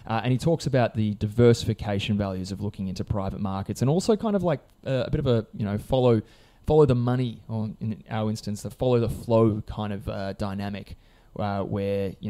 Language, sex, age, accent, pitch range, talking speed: English, male, 20-39, Australian, 100-125 Hz, 215 wpm